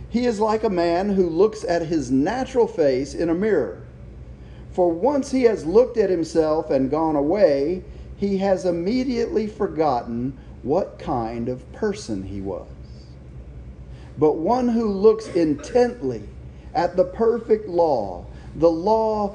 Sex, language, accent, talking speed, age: male, English, American, 140 wpm, 40-59